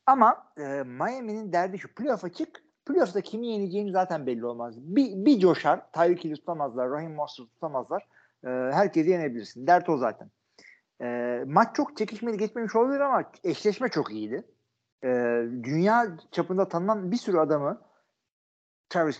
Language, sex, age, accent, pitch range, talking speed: Turkish, male, 50-69, native, 130-200 Hz, 145 wpm